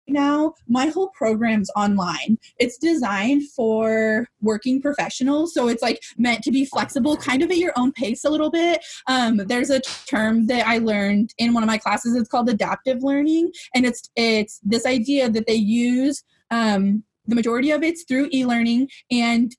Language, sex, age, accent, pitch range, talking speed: English, female, 20-39, American, 220-270 Hz, 180 wpm